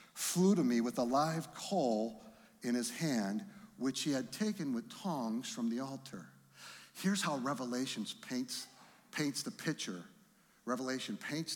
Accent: American